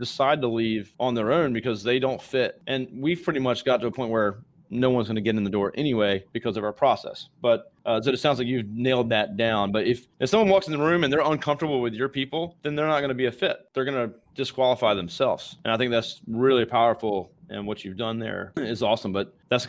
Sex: male